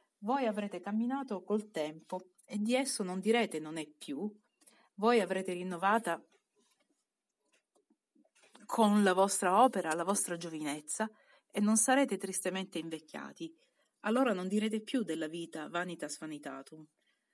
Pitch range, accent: 170-220 Hz, native